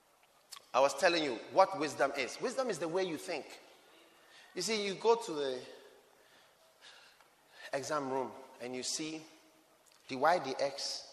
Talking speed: 140 wpm